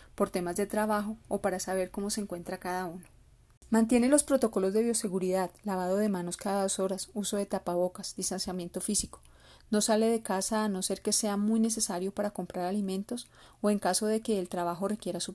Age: 30-49